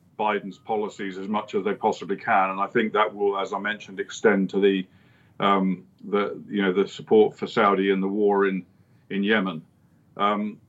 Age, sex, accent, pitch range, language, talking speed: 50-69, male, British, 100-125 Hz, English, 195 wpm